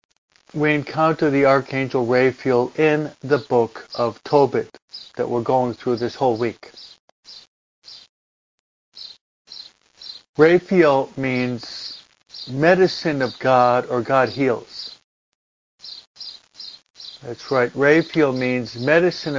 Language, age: English, 50-69